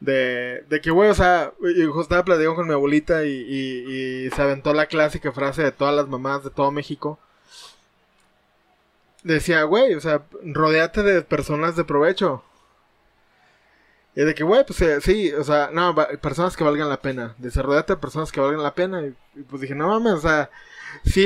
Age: 20-39